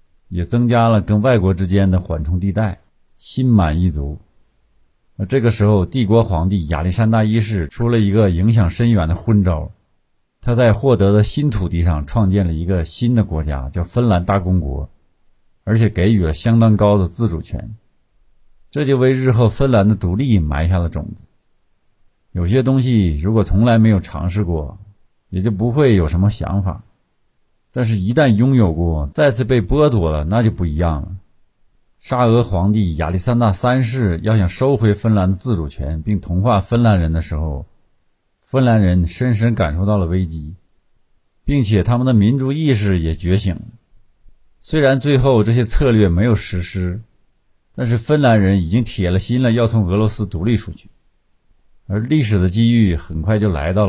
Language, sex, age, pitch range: Chinese, male, 50-69, 90-115 Hz